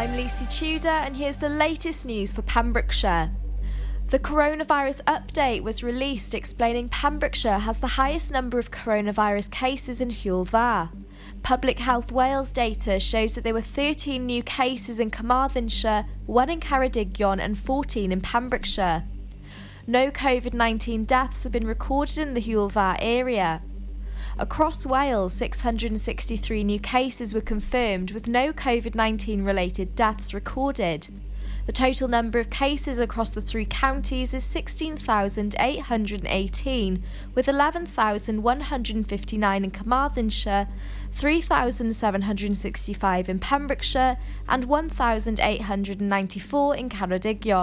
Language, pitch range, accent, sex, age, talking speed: English, 210-265 Hz, British, female, 20-39, 110 wpm